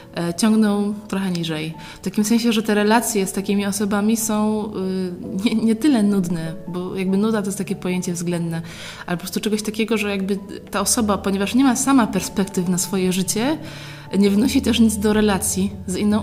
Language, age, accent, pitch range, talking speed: Polish, 20-39, native, 180-215 Hz, 185 wpm